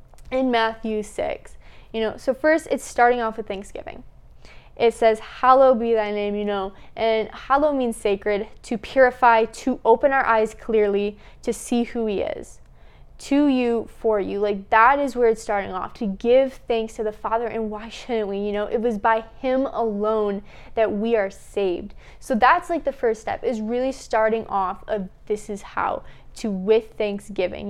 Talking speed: 185 wpm